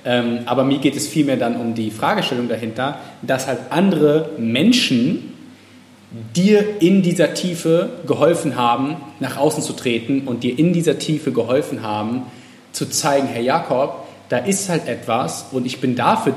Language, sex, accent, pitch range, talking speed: German, male, German, 130-175 Hz, 160 wpm